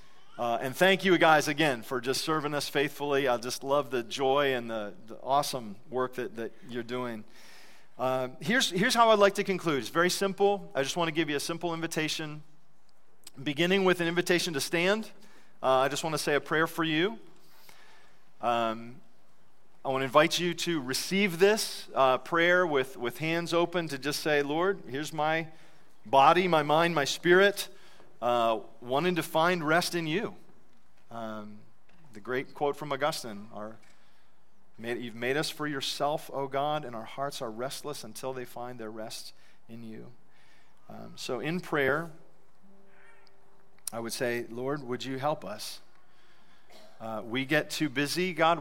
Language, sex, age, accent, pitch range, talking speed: English, male, 40-59, American, 125-170 Hz, 170 wpm